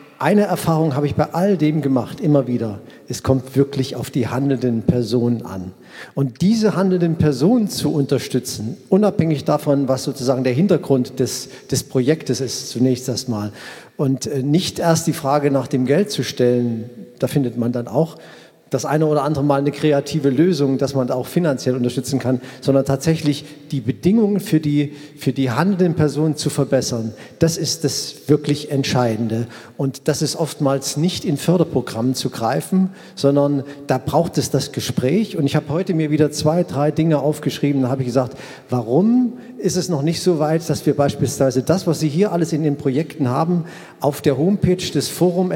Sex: male